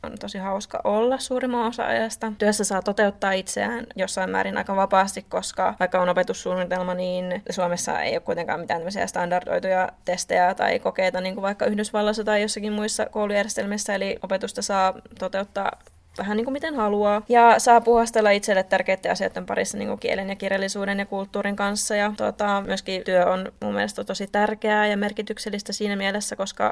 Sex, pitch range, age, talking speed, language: female, 190-210 Hz, 20-39, 165 wpm, Finnish